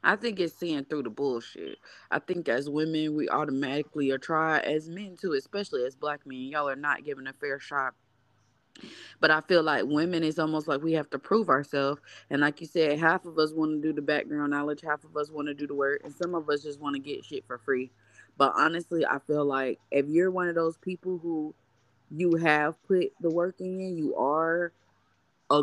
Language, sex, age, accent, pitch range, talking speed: English, female, 20-39, American, 145-175 Hz, 220 wpm